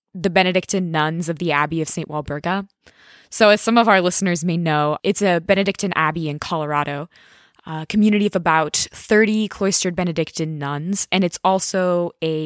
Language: English